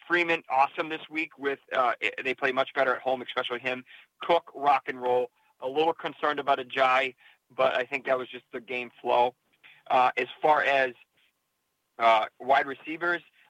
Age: 30-49